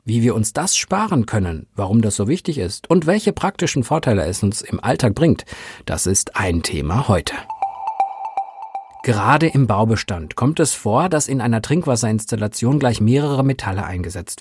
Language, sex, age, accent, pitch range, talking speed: German, male, 50-69, German, 105-160 Hz, 160 wpm